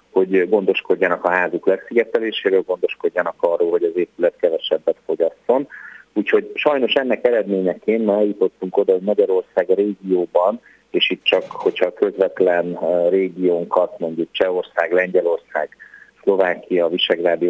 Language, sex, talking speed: Hungarian, male, 115 wpm